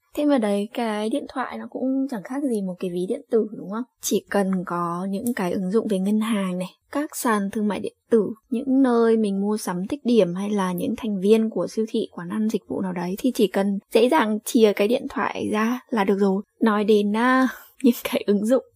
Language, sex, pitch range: Vietnamese, female, 195-255 Hz